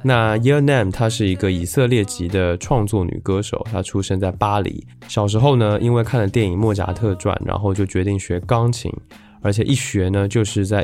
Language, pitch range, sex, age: Chinese, 95-115 Hz, male, 20-39